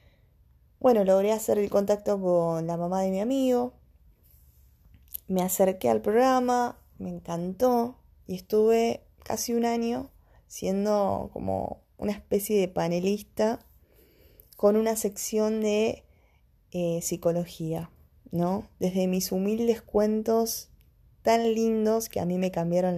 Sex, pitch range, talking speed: female, 170-215 Hz, 120 wpm